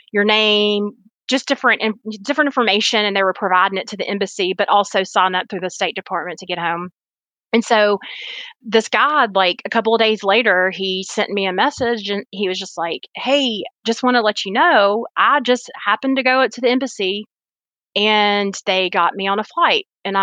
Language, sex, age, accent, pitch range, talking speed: English, female, 30-49, American, 185-230 Hz, 200 wpm